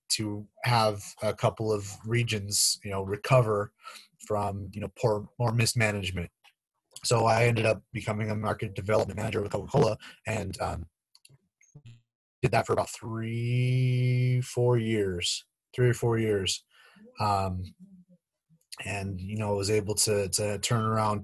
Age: 30-49